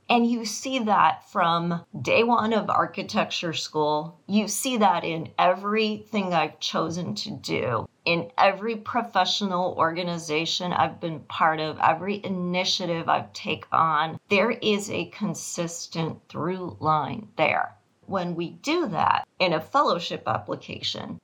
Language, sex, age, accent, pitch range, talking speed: English, female, 40-59, American, 165-215 Hz, 135 wpm